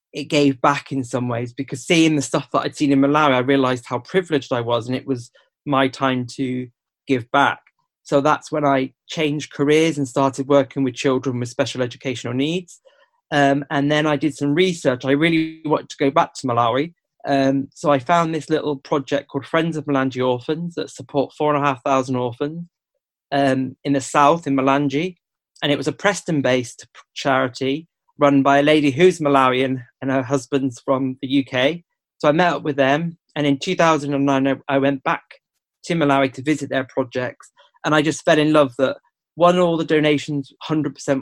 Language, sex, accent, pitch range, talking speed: English, male, British, 135-155 Hz, 195 wpm